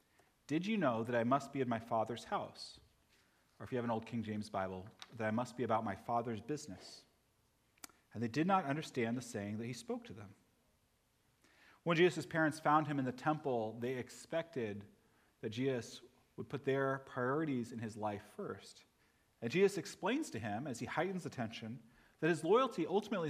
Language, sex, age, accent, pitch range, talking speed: English, male, 30-49, American, 110-150 Hz, 190 wpm